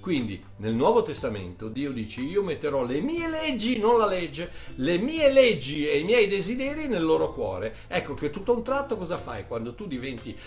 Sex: male